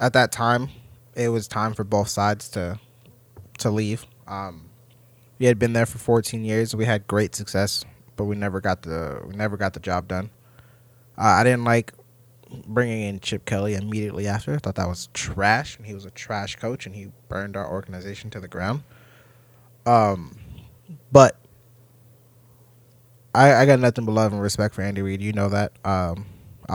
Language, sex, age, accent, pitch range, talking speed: English, male, 20-39, American, 100-120 Hz, 185 wpm